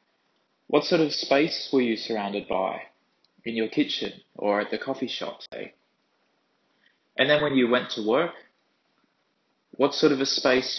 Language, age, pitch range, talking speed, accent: English, 20-39, 110-130 Hz, 160 wpm, Australian